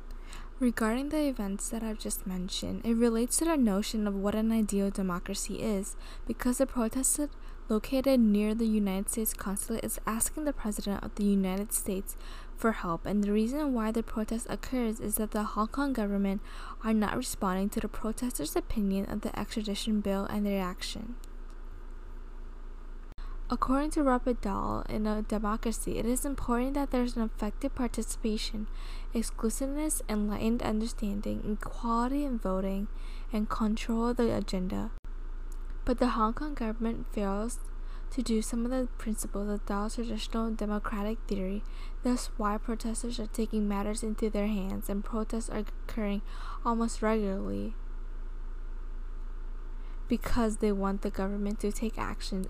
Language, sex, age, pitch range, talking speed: English, female, 10-29, 205-235 Hz, 150 wpm